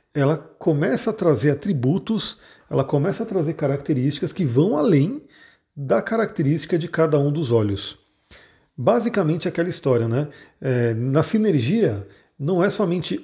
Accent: Brazilian